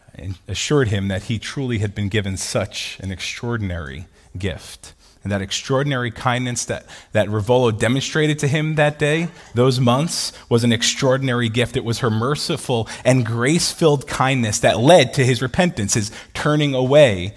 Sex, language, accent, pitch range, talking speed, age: male, English, American, 110-180 Hz, 160 wpm, 30-49